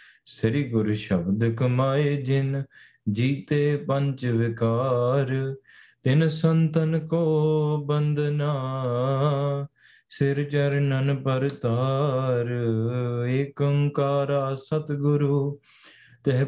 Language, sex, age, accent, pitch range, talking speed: English, male, 20-39, Indian, 130-145 Hz, 75 wpm